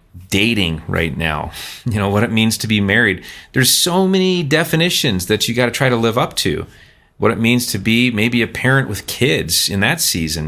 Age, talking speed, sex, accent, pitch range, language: 30-49, 210 wpm, male, American, 95-120 Hz, English